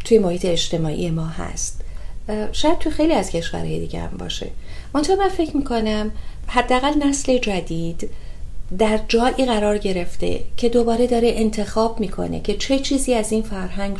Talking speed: 150 wpm